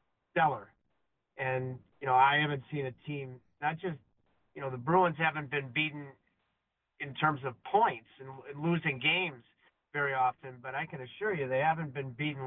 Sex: male